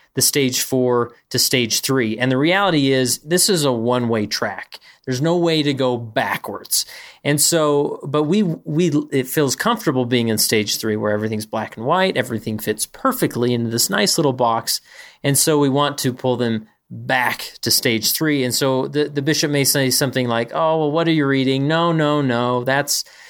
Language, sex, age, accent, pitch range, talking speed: English, male, 30-49, American, 120-150 Hz, 200 wpm